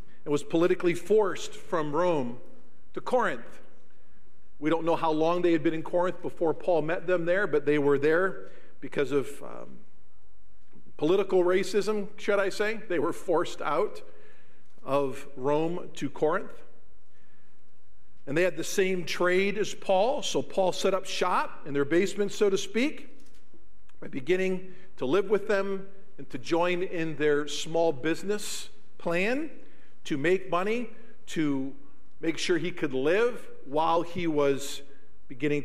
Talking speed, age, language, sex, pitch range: 150 wpm, 50-69, English, male, 140-185 Hz